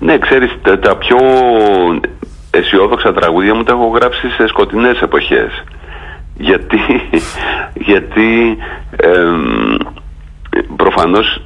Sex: male